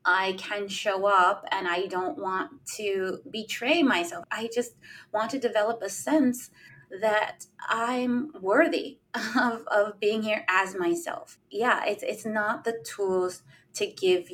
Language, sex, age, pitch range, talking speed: English, female, 20-39, 180-245 Hz, 145 wpm